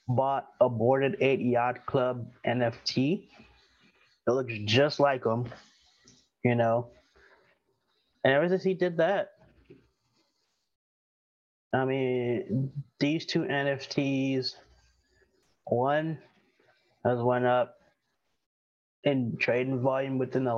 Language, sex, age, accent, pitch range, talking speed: English, male, 20-39, American, 120-140 Hz, 100 wpm